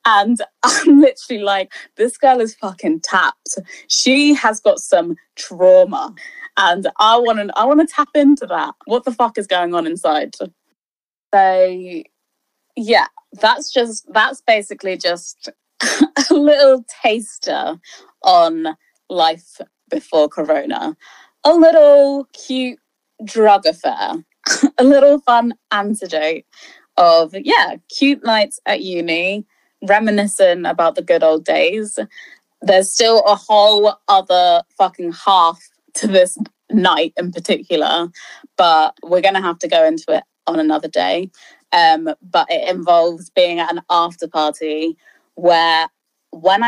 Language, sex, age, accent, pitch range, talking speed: English, female, 20-39, British, 180-290 Hz, 125 wpm